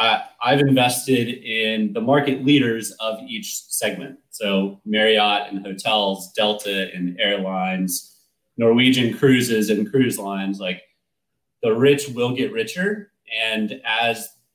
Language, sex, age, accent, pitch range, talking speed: English, male, 30-49, American, 95-120 Hz, 125 wpm